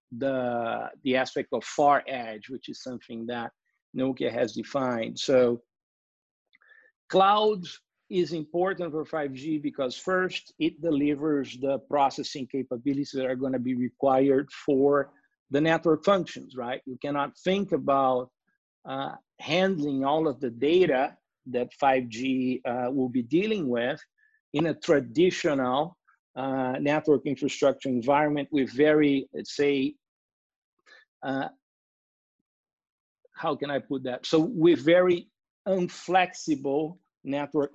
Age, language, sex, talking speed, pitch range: 50-69, English, male, 120 wpm, 130-165 Hz